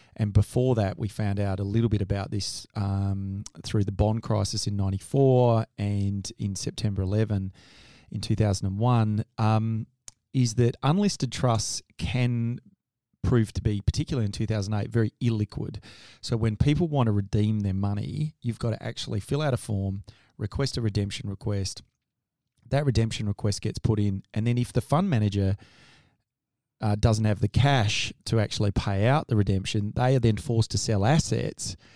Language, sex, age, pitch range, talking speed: English, male, 30-49, 105-120 Hz, 165 wpm